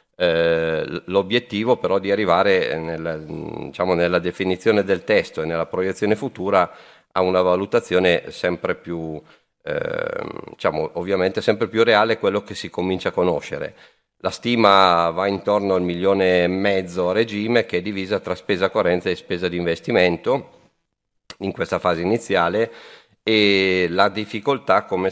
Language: Italian